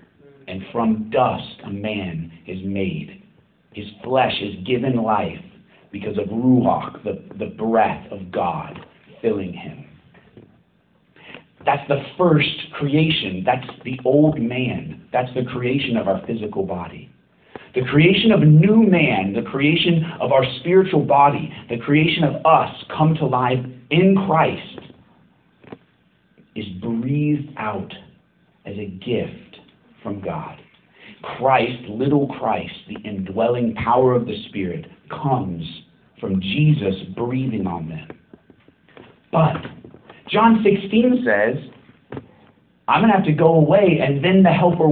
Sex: male